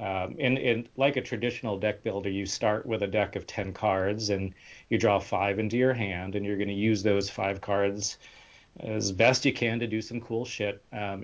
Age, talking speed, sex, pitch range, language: 40-59, 215 wpm, male, 100-115 Hz, English